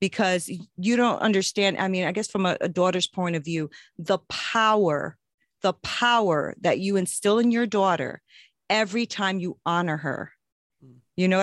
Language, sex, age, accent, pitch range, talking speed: English, female, 40-59, American, 180-225 Hz, 170 wpm